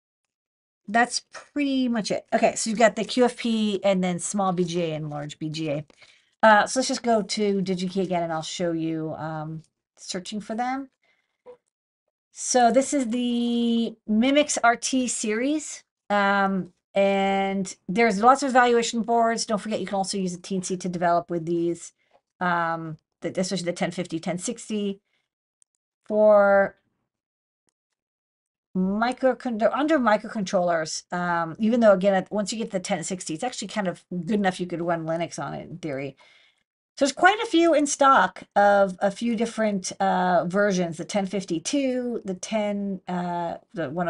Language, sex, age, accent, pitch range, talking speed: English, female, 40-59, American, 180-230 Hz, 155 wpm